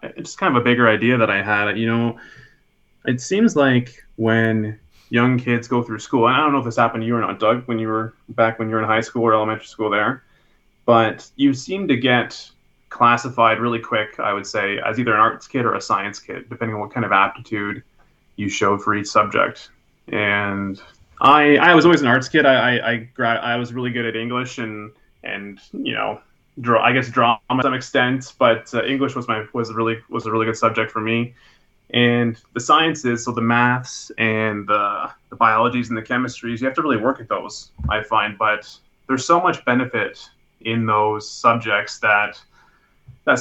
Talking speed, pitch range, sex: 205 wpm, 110-125 Hz, male